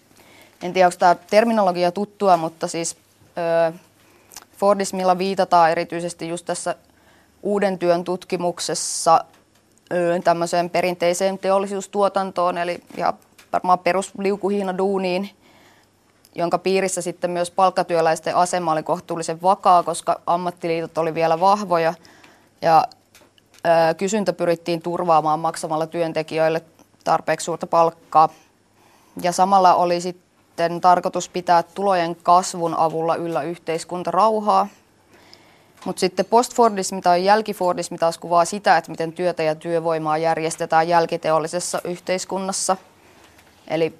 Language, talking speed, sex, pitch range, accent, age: Finnish, 100 wpm, female, 165-185 Hz, native, 20-39